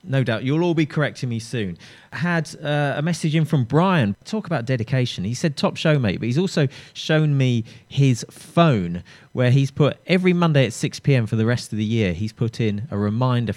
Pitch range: 115-155 Hz